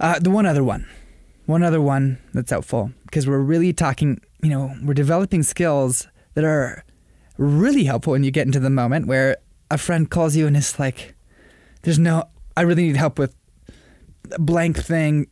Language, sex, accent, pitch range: English, male, American, 120-165 Hz